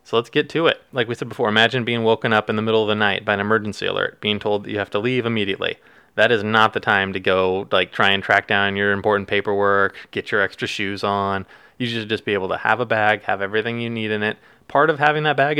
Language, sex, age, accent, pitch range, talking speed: English, male, 20-39, American, 105-135 Hz, 275 wpm